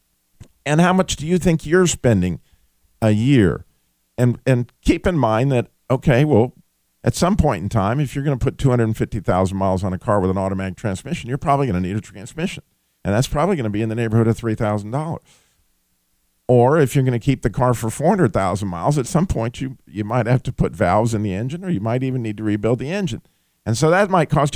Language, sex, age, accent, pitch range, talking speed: English, male, 50-69, American, 95-140 Hz, 225 wpm